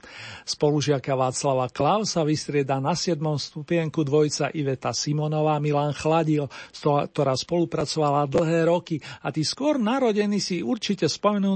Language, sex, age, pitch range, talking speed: Slovak, male, 40-59, 145-170 Hz, 125 wpm